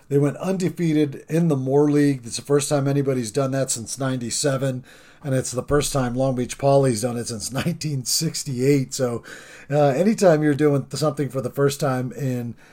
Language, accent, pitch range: English, American, 120-145 Hz